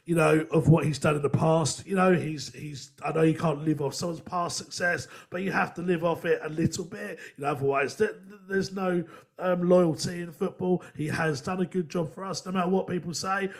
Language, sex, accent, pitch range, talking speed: English, male, British, 160-190 Hz, 240 wpm